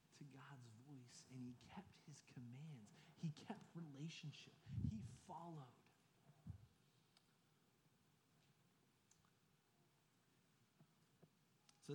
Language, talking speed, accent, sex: English, 70 wpm, American, male